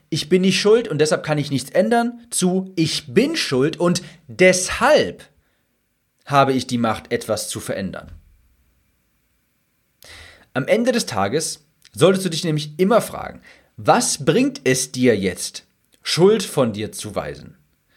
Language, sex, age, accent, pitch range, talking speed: German, male, 40-59, German, 120-185 Hz, 145 wpm